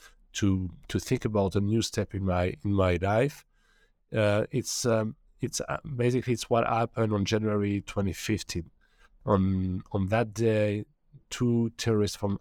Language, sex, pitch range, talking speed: English, male, 100-115 Hz, 150 wpm